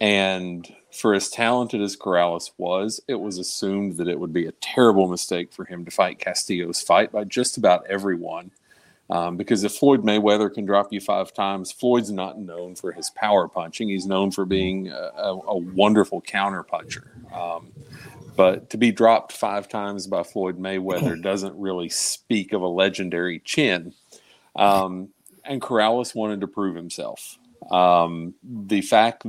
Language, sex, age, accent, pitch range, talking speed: English, male, 40-59, American, 90-105 Hz, 165 wpm